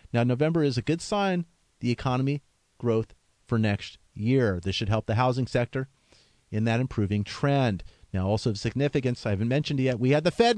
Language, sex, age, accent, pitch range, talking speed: English, male, 40-59, American, 130-190 Hz, 195 wpm